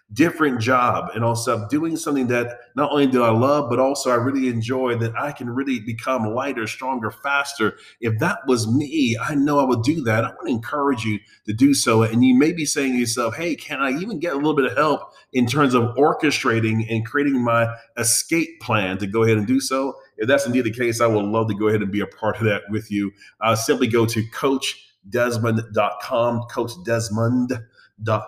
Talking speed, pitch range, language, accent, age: 215 wpm, 105-125 Hz, English, American, 30-49